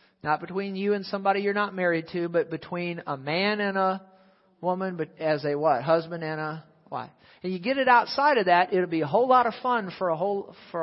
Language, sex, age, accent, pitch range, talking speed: English, male, 40-59, American, 160-190 Hz, 235 wpm